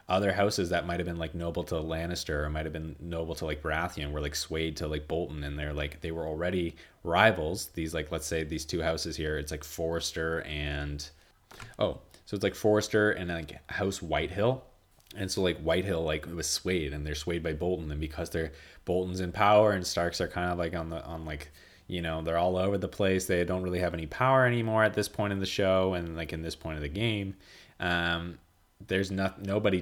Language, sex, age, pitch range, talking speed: English, male, 20-39, 80-90 Hz, 225 wpm